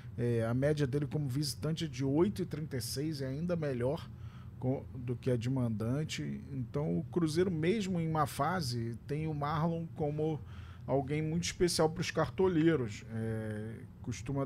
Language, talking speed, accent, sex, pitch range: Portuguese, 155 wpm, Brazilian, male, 115-150 Hz